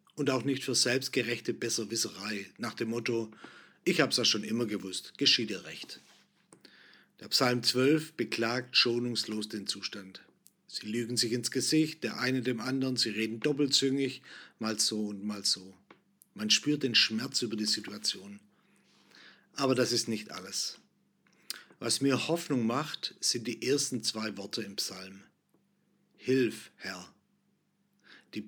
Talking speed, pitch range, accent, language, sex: 145 wpm, 105-135 Hz, German, German, male